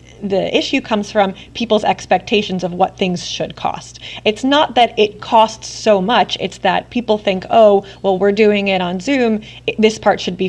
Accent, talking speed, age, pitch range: American, 190 wpm, 30-49, 185-215 Hz